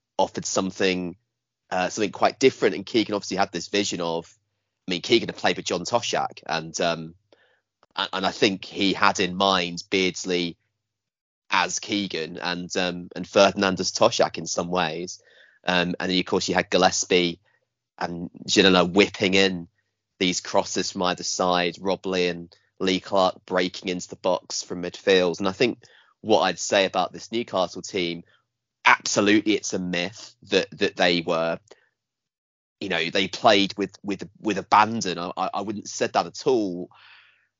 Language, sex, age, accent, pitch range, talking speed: English, male, 30-49, British, 90-100 Hz, 170 wpm